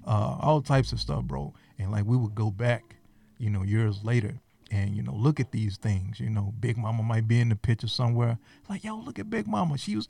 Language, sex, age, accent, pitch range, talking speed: English, male, 30-49, American, 105-130 Hz, 245 wpm